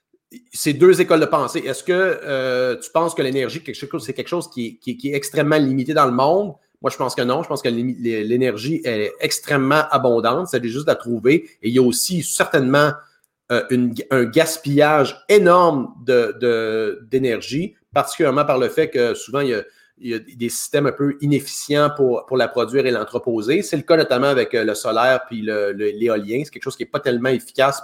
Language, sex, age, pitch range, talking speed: French, male, 40-59, 125-170 Hz, 200 wpm